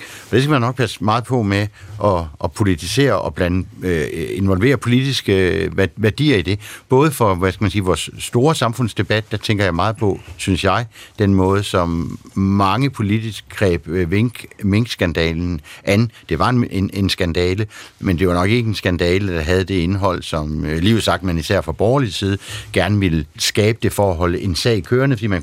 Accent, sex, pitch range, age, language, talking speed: native, male, 90-115 Hz, 60-79, Danish, 200 wpm